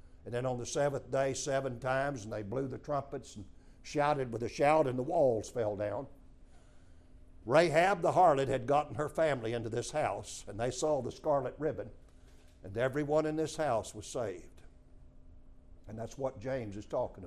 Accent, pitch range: American, 85-140 Hz